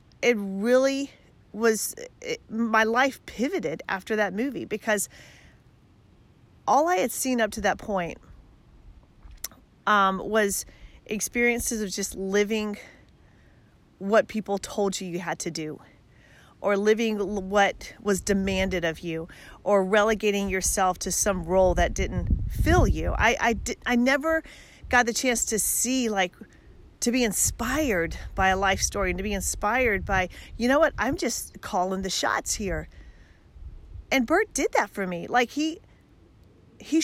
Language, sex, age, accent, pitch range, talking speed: English, female, 40-59, American, 190-255 Hz, 145 wpm